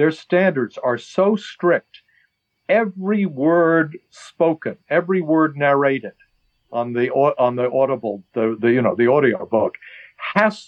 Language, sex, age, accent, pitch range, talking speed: English, male, 60-79, American, 125-170 Hz, 135 wpm